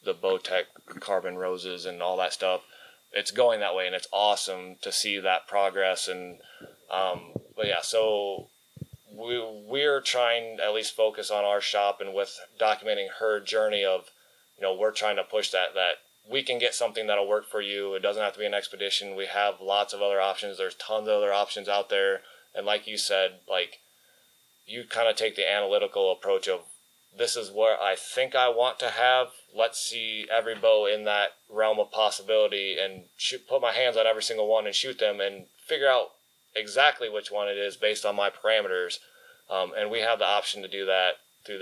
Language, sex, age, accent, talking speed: English, male, 20-39, American, 200 wpm